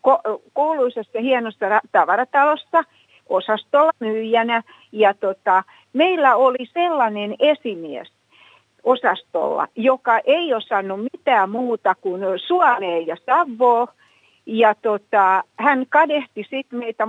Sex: female